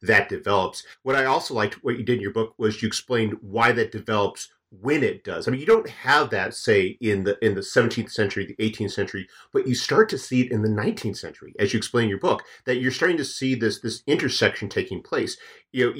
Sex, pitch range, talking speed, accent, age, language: male, 100-125 Hz, 245 wpm, American, 40-59, English